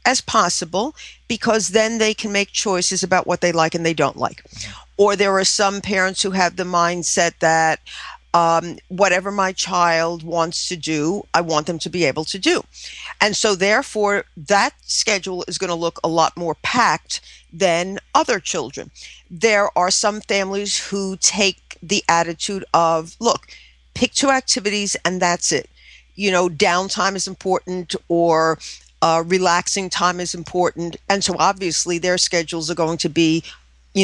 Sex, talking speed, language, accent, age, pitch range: female, 165 wpm, English, American, 50-69, 170-215 Hz